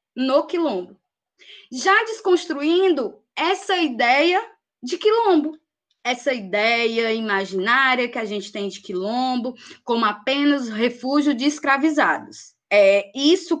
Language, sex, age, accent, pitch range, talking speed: Portuguese, female, 20-39, Brazilian, 225-325 Hz, 105 wpm